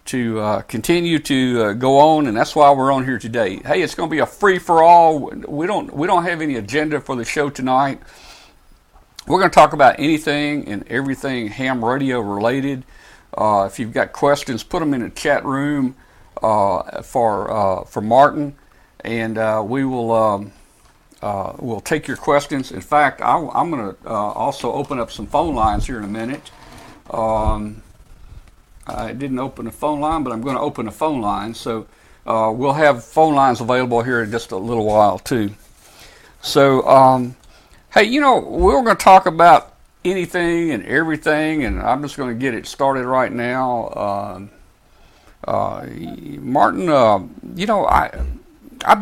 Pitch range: 110-145 Hz